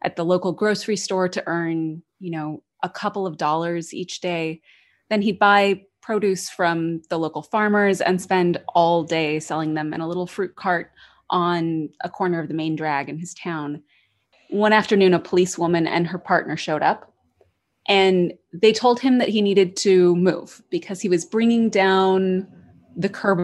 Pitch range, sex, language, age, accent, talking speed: 170-215 Hz, female, English, 20-39, American, 175 wpm